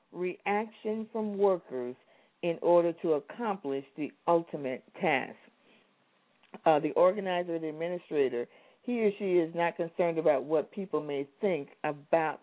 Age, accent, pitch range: 50-69, American, 155-210 Hz